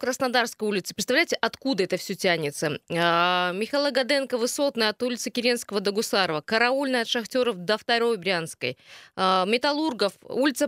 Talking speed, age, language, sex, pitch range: 140 wpm, 20-39, Russian, female, 190-250 Hz